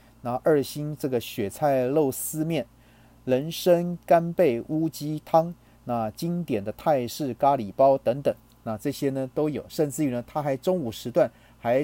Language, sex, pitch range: Chinese, male, 115-155 Hz